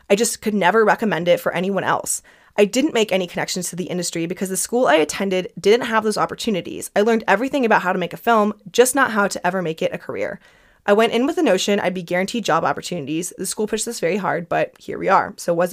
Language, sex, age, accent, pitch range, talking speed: English, female, 20-39, American, 170-210 Hz, 255 wpm